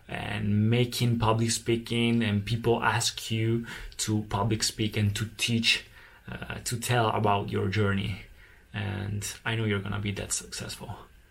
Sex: male